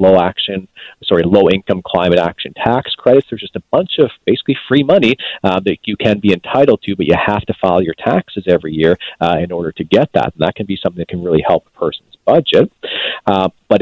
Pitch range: 90-110 Hz